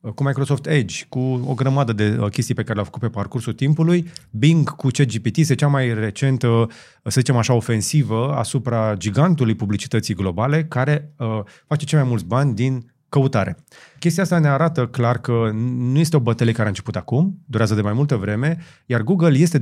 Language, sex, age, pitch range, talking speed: Romanian, male, 30-49, 110-140 Hz, 185 wpm